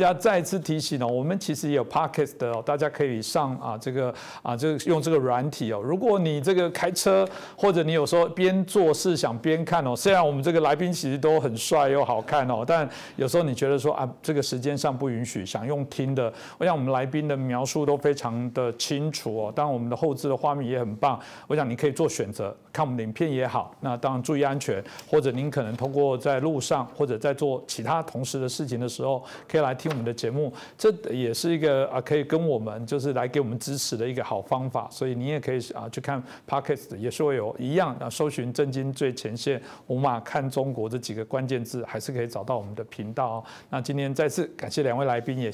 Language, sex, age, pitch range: Chinese, male, 50-69, 125-165 Hz